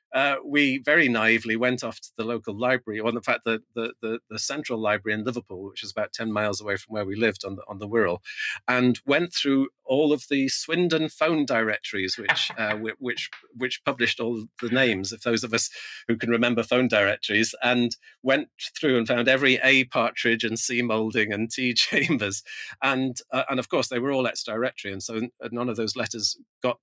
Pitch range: 115-130 Hz